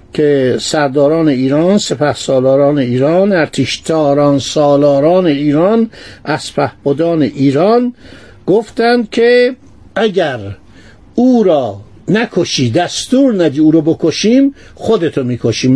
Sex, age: male, 60-79